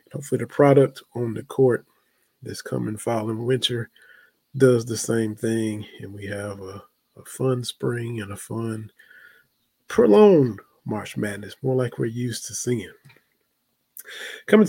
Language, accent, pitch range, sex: English, American, 110-135 Hz, male